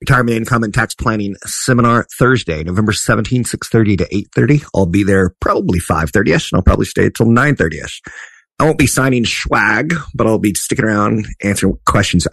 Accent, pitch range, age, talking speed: American, 90-110 Hz, 30-49, 170 wpm